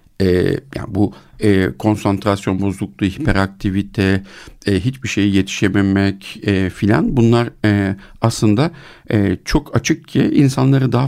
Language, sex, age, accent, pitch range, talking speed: Turkish, male, 50-69, native, 95-125 Hz, 120 wpm